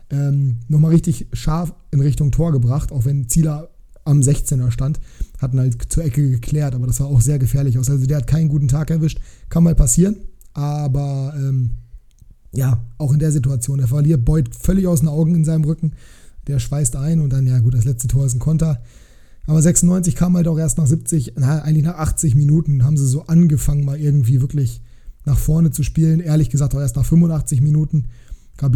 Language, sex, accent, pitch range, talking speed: German, male, German, 135-155 Hz, 205 wpm